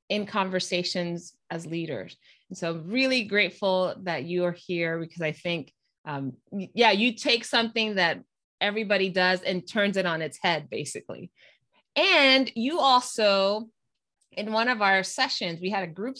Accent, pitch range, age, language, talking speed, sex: American, 170-220 Hz, 20-39, English, 155 wpm, female